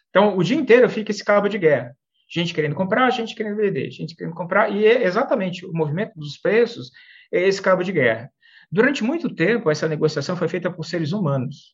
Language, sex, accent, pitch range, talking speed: Portuguese, male, Brazilian, 150-215 Hz, 205 wpm